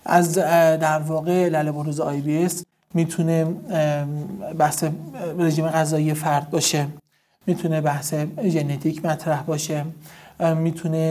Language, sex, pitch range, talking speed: Persian, male, 150-170 Hz, 110 wpm